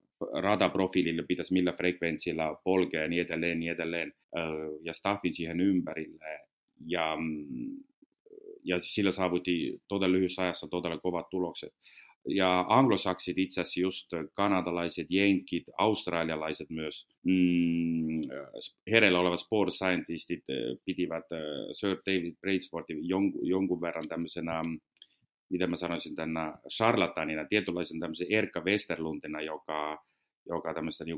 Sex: male